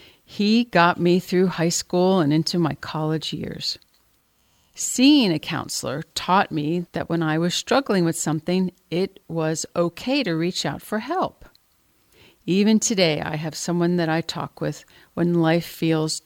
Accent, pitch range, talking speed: American, 160-215 Hz, 160 wpm